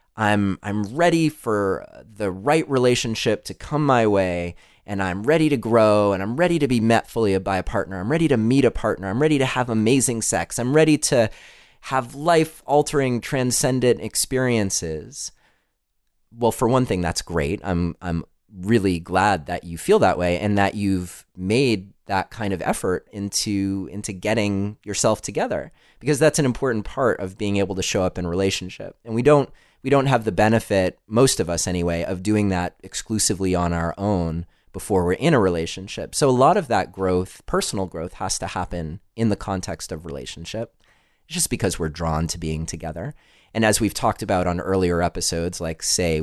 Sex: male